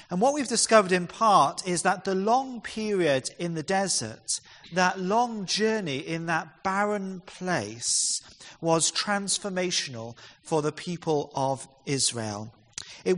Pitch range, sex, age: 140-190 Hz, male, 40-59